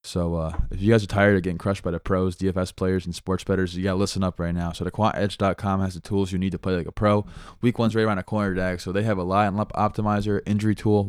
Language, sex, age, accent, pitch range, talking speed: English, male, 20-39, American, 90-105 Hz, 280 wpm